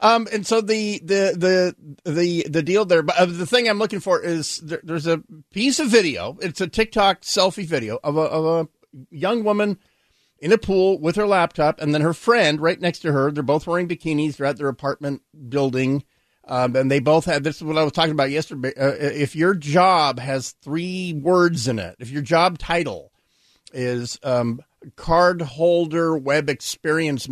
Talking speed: 190 wpm